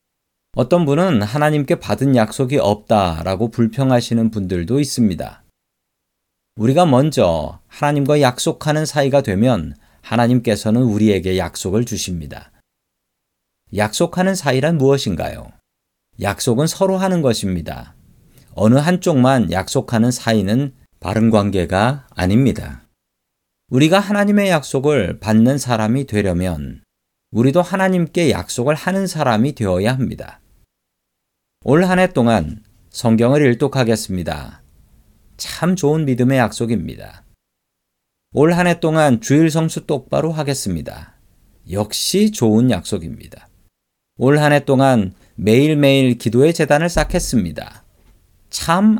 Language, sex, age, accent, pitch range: Korean, male, 40-59, native, 105-150 Hz